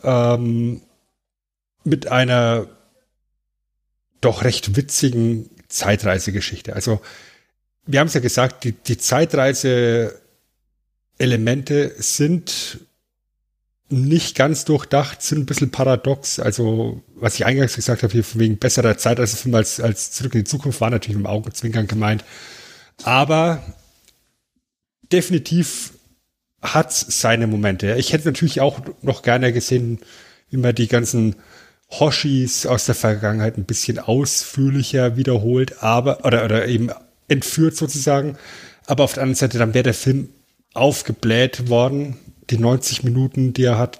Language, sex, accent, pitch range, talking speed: German, male, German, 115-135 Hz, 125 wpm